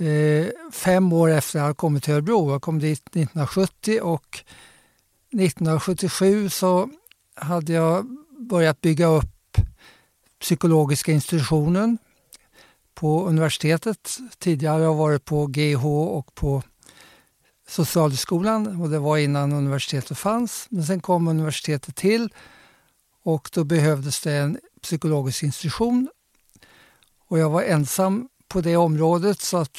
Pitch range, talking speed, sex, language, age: 150-190 Hz, 120 wpm, male, English, 60-79